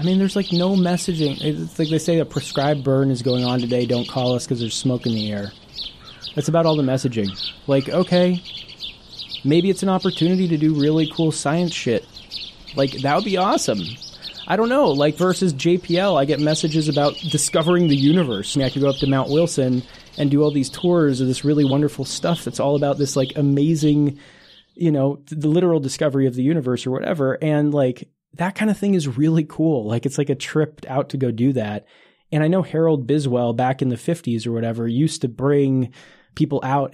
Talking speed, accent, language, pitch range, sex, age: 215 wpm, American, English, 135-165 Hz, male, 20-39